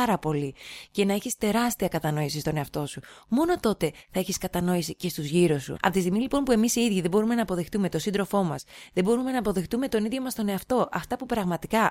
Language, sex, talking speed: Greek, female, 230 wpm